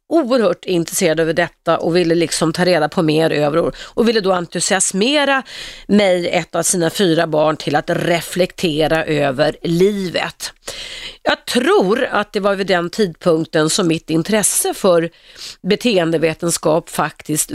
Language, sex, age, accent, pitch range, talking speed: Swedish, female, 30-49, native, 165-220 Hz, 140 wpm